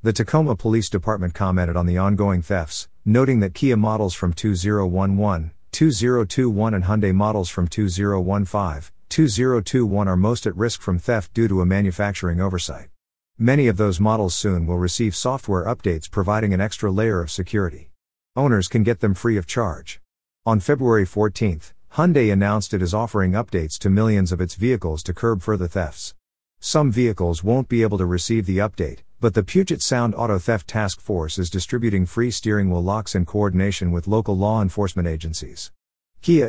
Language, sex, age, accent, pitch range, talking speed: English, male, 50-69, American, 90-110 Hz, 170 wpm